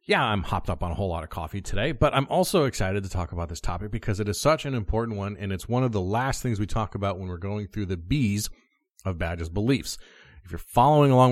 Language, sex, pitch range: English, male, 95-130 Hz